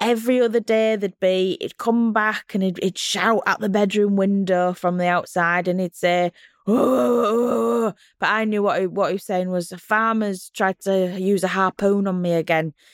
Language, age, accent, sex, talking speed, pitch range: English, 20-39, British, female, 195 wpm, 185-240 Hz